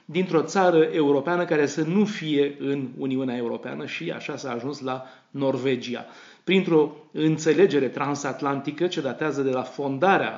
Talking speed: 140 wpm